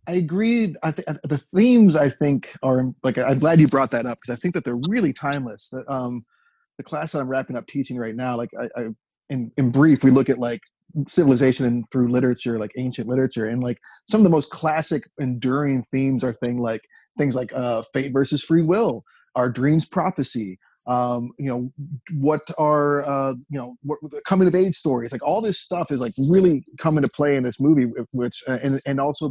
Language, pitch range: English, 130-175 Hz